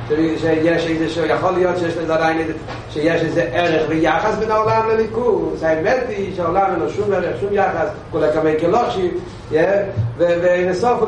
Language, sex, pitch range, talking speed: Hebrew, male, 145-215 Hz, 170 wpm